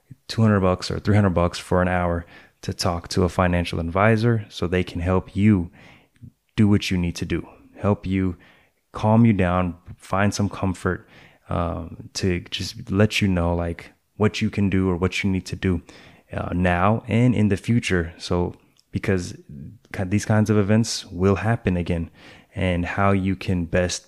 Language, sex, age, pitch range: English, male, 20-39, 85-100 Hz